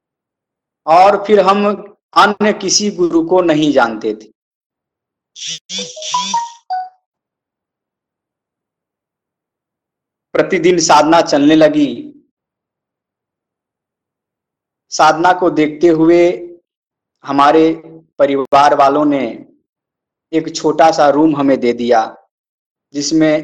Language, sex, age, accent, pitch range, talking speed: Hindi, male, 50-69, native, 140-195 Hz, 75 wpm